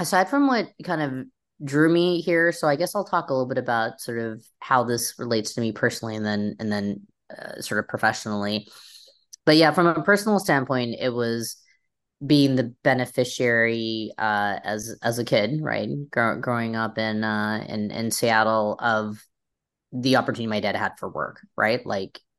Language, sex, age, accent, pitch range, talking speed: English, female, 20-39, American, 110-140 Hz, 180 wpm